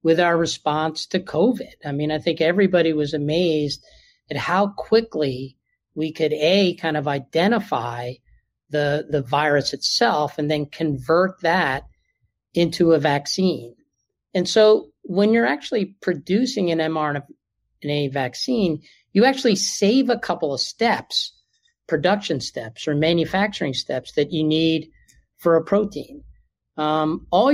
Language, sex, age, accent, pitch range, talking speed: English, male, 50-69, American, 145-185 Hz, 135 wpm